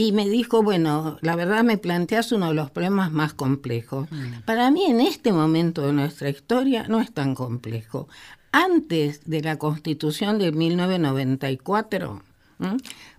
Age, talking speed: 50-69, 145 wpm